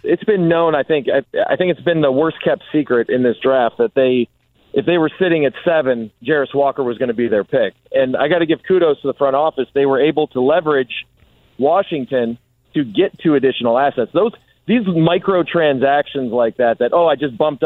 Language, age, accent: English, 40-59, American